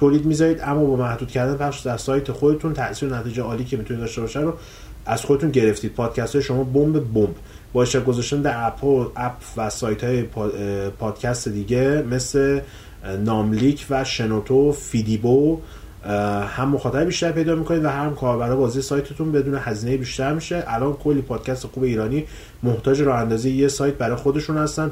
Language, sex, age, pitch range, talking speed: Persian, male, 30-49, 115-150 Hz, 160 wpm